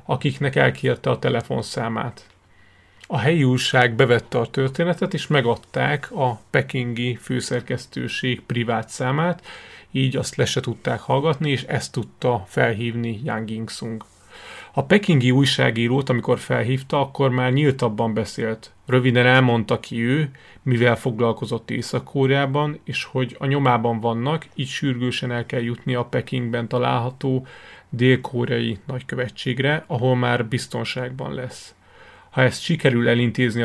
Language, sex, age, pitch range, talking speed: Hungarian, male, 30-49, 115-135 Hz, 120 wpm